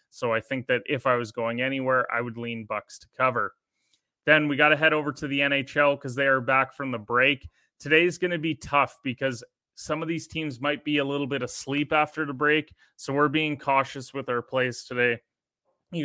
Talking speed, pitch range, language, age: 225 wpm, 125-145 Hz, English, 20-39